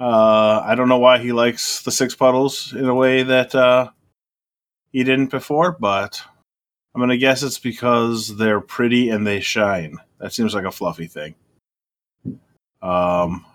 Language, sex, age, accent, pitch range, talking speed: English, male, 30-49, American, 100-130 Hz, 165 wpm